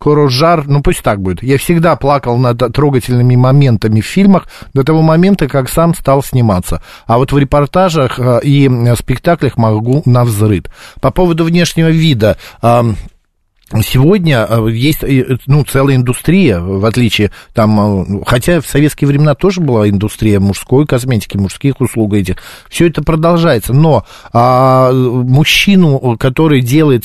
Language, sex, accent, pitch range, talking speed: Russian, male, native, 120-160 Hz, 130 wpm